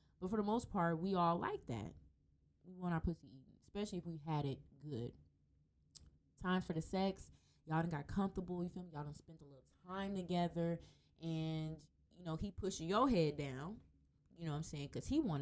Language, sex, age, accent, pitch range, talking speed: English, female, 20-39, American, 145-195 Hz, 200 wpm